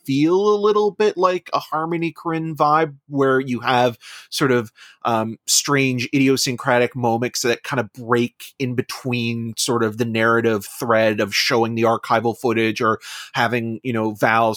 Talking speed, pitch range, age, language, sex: 160 wpm, 110-135 Hz, 30-49, English, male